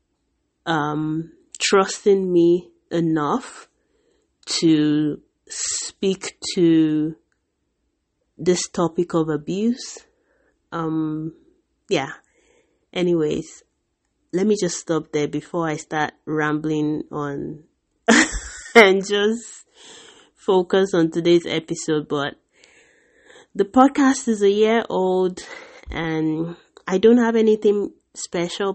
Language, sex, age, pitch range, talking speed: English, female, 30-49, 155-225 Hz, 90 wpm